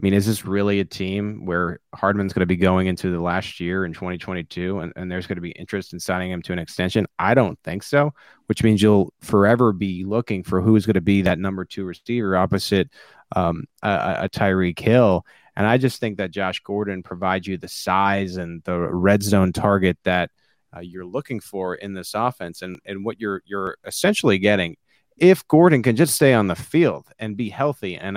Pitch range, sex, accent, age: 95-120 Hz, male, American, 30-49